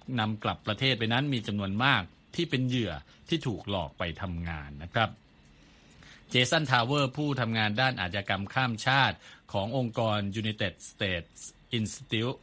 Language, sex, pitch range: Thai, male, 95-125 Hz